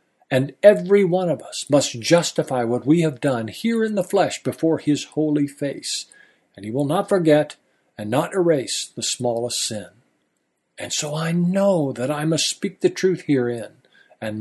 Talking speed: 175 wpm